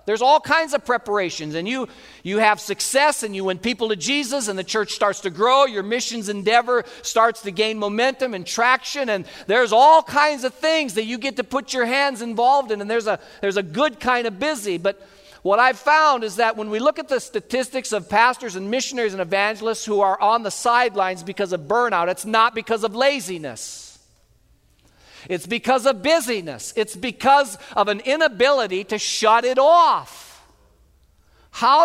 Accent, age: American, 50-69